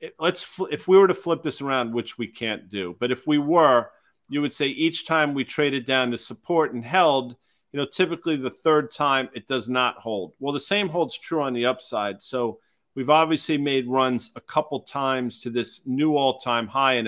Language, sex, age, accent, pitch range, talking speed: English, male, 50-69, American, 120-145 Hz, 220 wpm